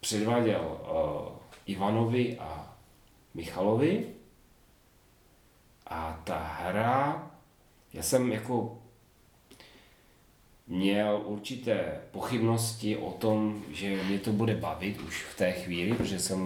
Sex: male